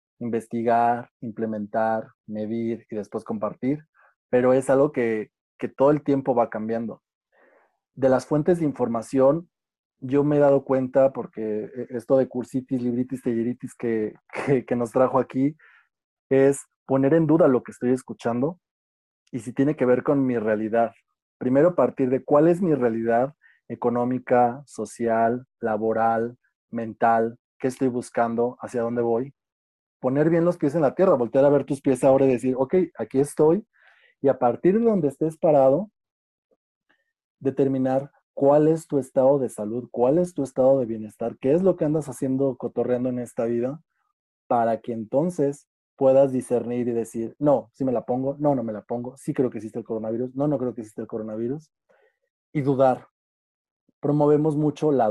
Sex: male